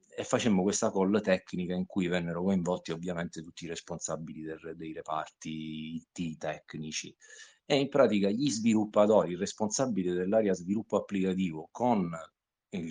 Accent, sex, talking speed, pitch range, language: native, male, 140 wpm, 85-110 Hz, Italian